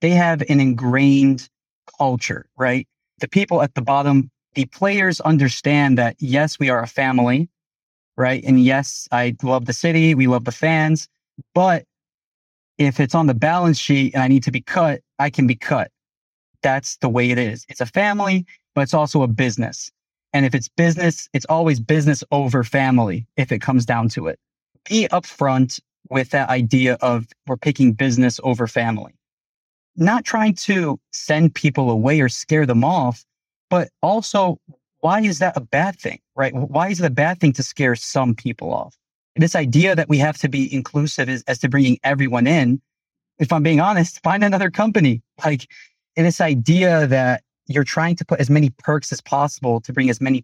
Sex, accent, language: male, American, English